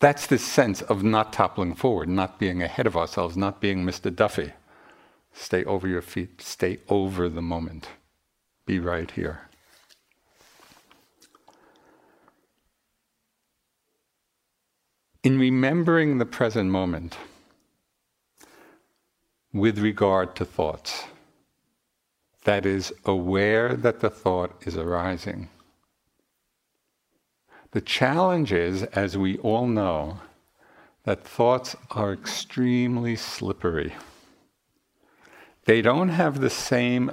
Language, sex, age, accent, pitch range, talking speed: English, male, 60-79, American, 90-120 Hz, 100 wpm